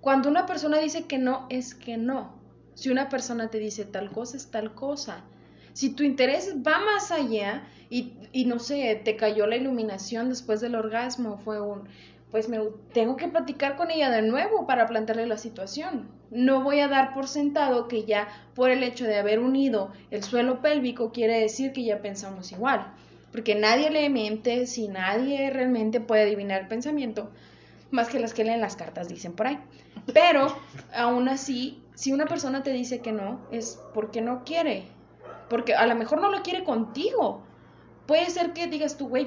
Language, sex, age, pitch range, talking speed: Spanish, female, 20-39, 225-285 Hz, 190 wpm